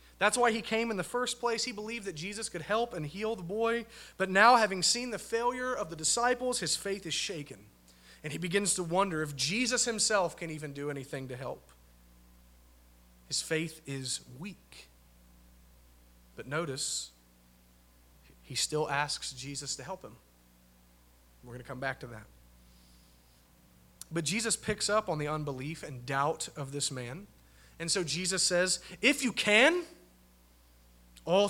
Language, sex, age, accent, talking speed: English, male, 30-49, American, 160 wpm